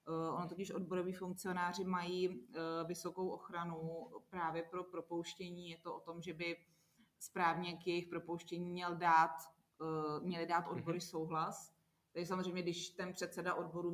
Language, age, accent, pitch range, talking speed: Czech, 30-49, native, 165-180 Hz, 140 wpm